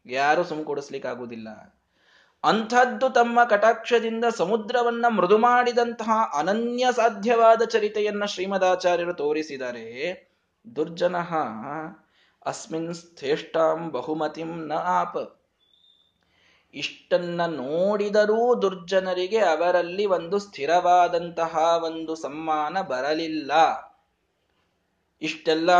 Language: Kannada